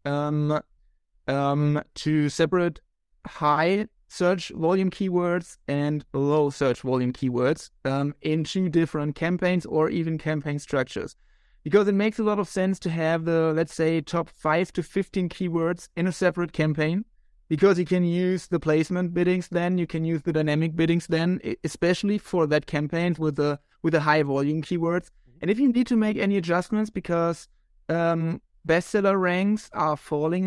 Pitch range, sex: 155-185 Hz, male